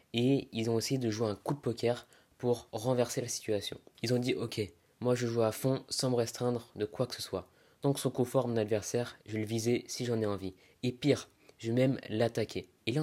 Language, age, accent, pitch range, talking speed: French, 20-39, French, 110-135 Hz, 250 wpm